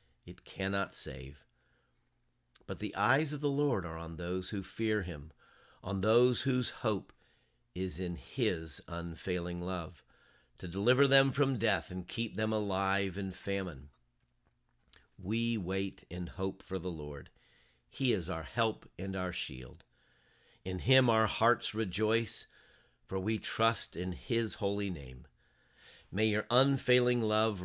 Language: English